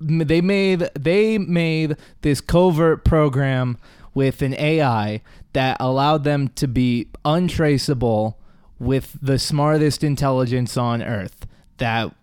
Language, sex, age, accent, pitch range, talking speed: English, male, 20-39, American, 120-150 Hz, 115 wpm